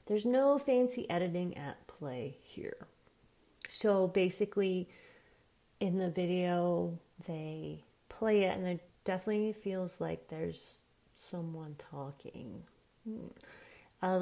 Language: English